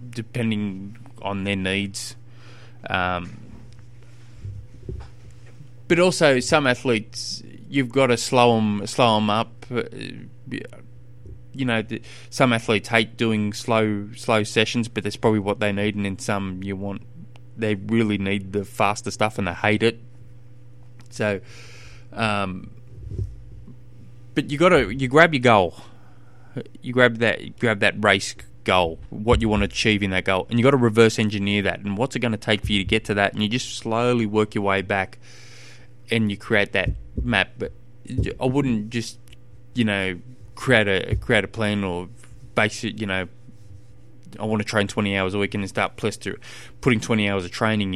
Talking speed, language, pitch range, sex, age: 175 wpm, English, 100-120 Hz, male, 20-39